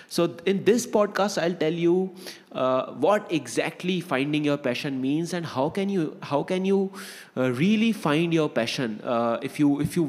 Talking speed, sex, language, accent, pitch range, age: 185 wpm, male, English, Indian, 130-180 Hz, 20-39